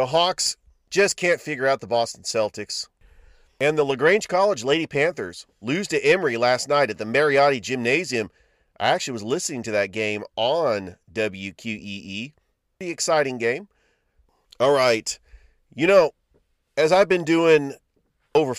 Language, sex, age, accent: English, male, 40-59, American